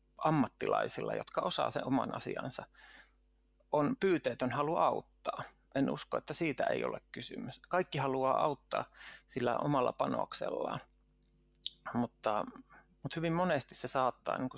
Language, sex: Finnish, male